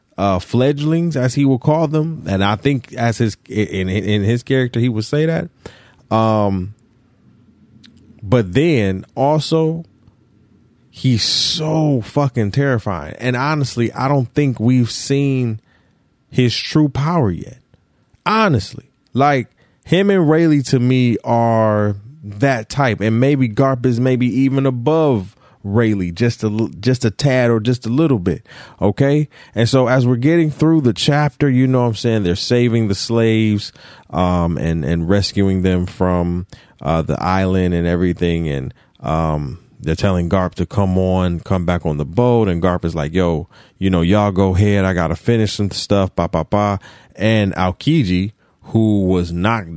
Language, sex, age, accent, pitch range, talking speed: English, male, 30-49, American, 95-130 Hz, 160 wpm